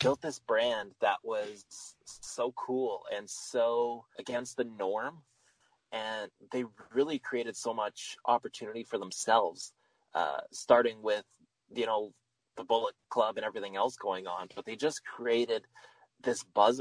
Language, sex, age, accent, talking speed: English, male, 20-39, American, 145 wpm